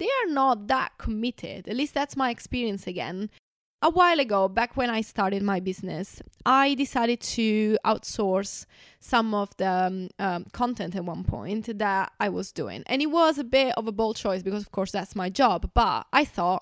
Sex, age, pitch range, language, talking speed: female, 20-39, 200-255 Hz, English, 200 wpm